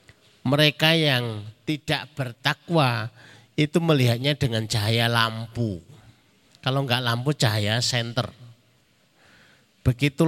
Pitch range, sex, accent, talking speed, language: 115-150 Hz, male, native, 90 wpm, Indonesian